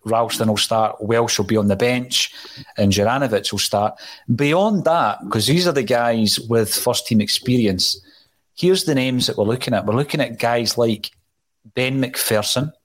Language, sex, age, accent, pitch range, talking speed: English, male, 30-49, British, 105-125 Hz, 175 wpm